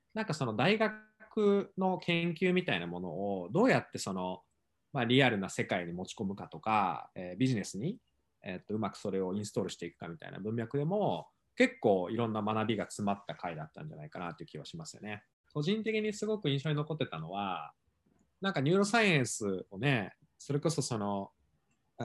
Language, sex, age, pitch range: Japanese, male, 20-39, 100-165 Hz